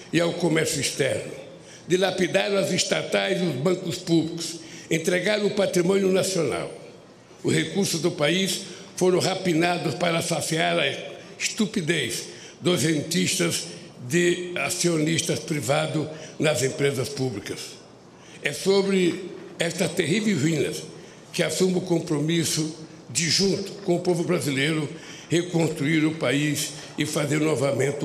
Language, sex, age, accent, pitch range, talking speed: Portuguese, male, 60-79, Brazilian, 145-175 Hz, 115 wpm